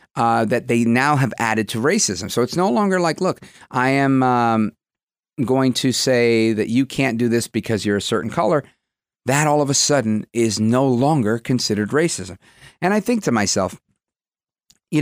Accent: American